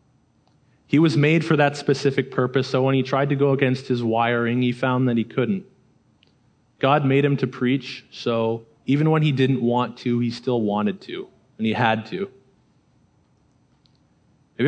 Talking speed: 170 wpm